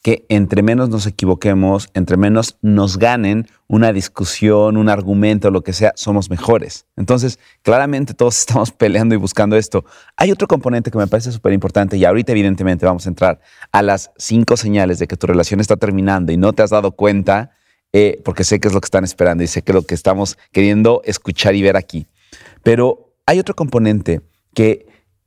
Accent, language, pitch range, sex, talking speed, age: Mexican, Spanish, 95-120 Hz, male, 190 wpm, 30-49